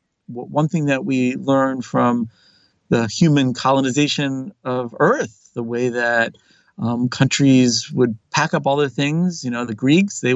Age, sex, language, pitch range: 40-59, male, English, 120-150 Hz